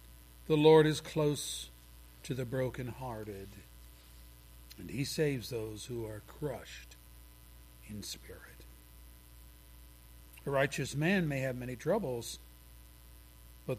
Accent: American